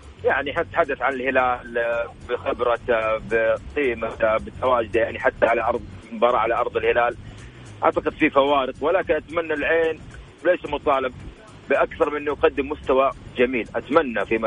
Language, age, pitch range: Arabic, 40-59, 125-180 Hz